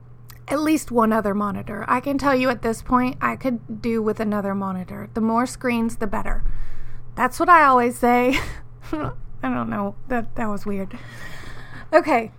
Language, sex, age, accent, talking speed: English, female, 30-49, American, 175 wpm